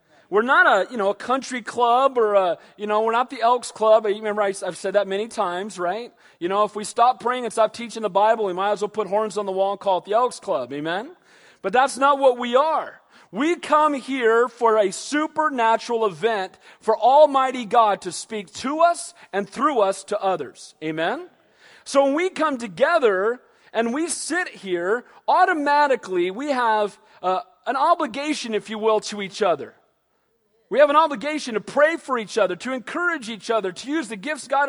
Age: 40-59